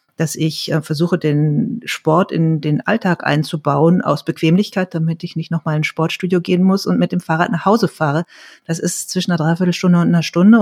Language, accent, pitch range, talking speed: German, German, 155-180 Hz, 205 wpm